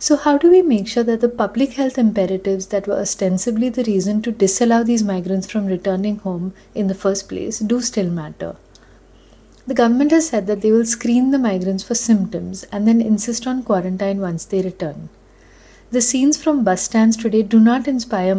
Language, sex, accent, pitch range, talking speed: English, female, Indian, 190-235 Hz, 195 wpm